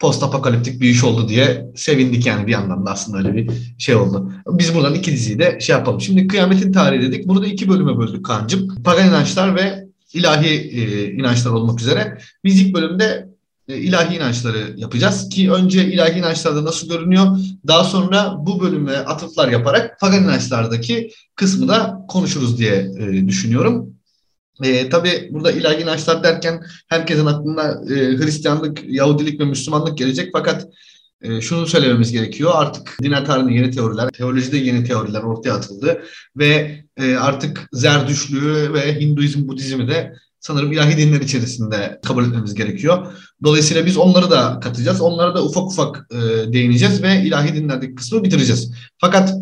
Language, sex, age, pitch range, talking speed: Turkish, male, 30-49, 125-170 Hz, 150 wpm